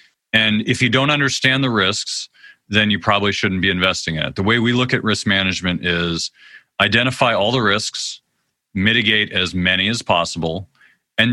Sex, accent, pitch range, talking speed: male, American, 90-120 Hz, 175 wpm